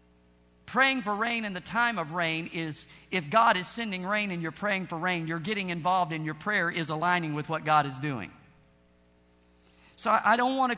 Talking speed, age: 205 wpm, 50-69